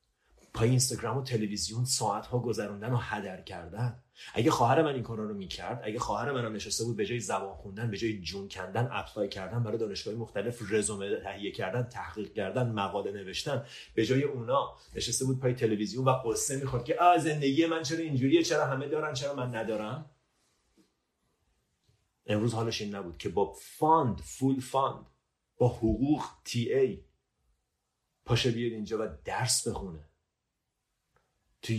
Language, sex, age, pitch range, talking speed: Persian, male, 30-49, 110-140 Hz, 155 wpm